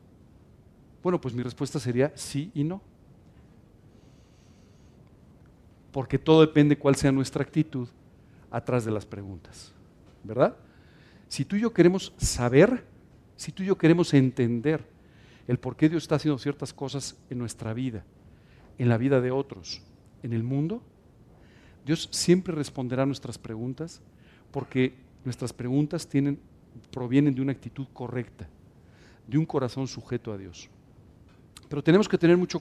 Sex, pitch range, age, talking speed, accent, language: male, 120-150 Hz, 50-69, 140 wpm, Mexican, Spanish